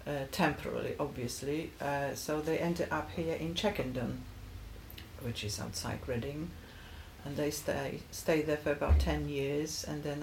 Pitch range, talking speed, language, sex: 125-160 Hz, 155 wpm, English, female